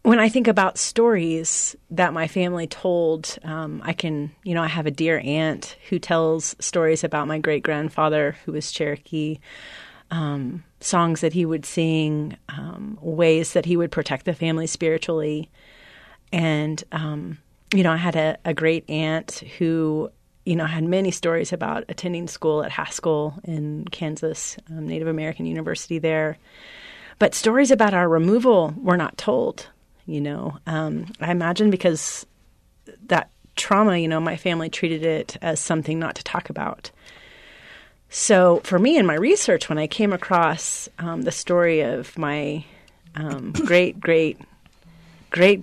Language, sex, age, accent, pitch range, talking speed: English, female, 30-49, American, 155-175 Hz, 155 wpm